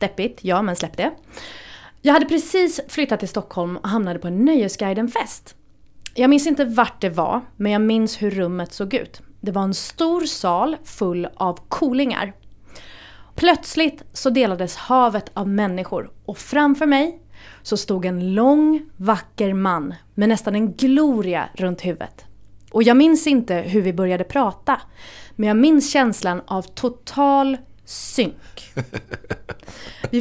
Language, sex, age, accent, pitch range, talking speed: Swedish, female, 30-49, native, 195-285 Hz, 145 wpm